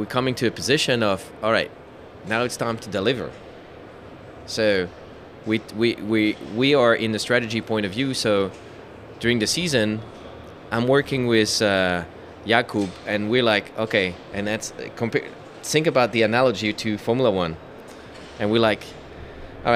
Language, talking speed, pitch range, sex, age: Czech, 160 wpm, 100-120 Hz, male, 20-39